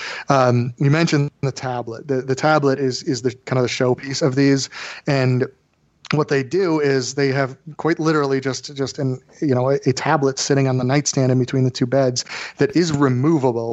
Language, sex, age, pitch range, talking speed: English, male, 30-49, 125-145 Hz, 200 wpm